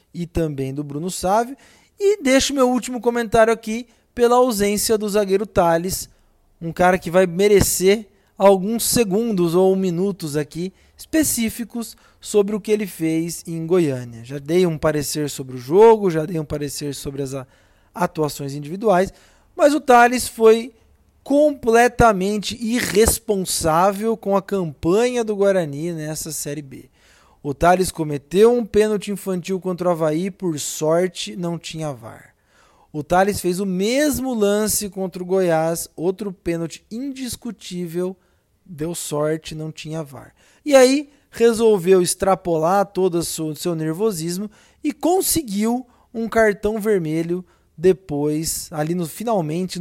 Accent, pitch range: Brazilian, 160-215 Hz